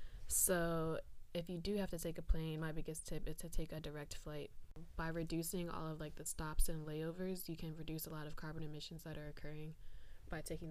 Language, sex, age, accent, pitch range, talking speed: English, female, 20-39, American, 155-175 Hz, 225 wpm